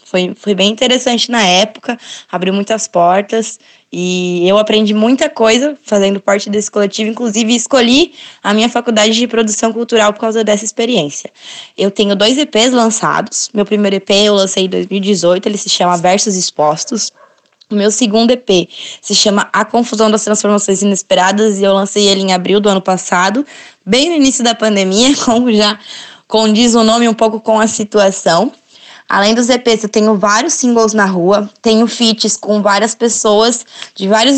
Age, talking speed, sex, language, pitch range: 10-29, 170 wpm, female, Portuguese, 195-235 Hz